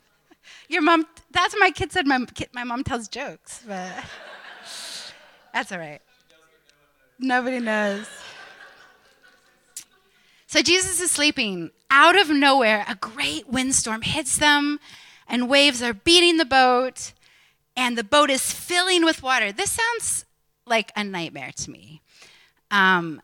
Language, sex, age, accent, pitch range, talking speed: English, female, 30-49, American, 215-300 Hz, 135 wpm